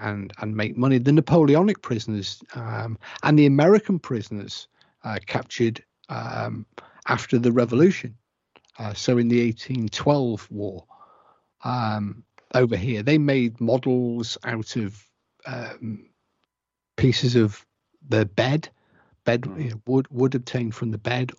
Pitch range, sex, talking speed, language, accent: 110-130 Hz, male, 130 wpm, English, British